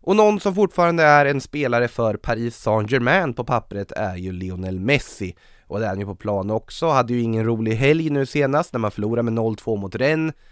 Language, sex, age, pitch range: English, male, 20-39, 100-130 Hz